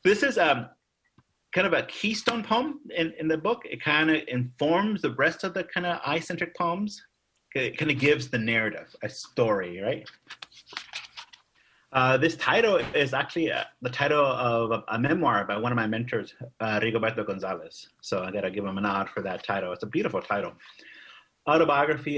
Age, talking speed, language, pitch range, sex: 30-49, 185 wpm, English, 115-160 Hz, male